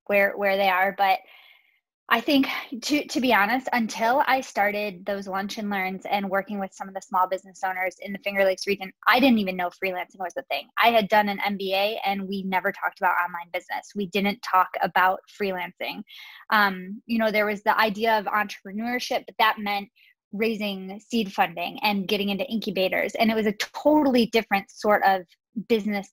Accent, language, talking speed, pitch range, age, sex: American, English, 195 wpm, 195-225 Hz, 20-39, female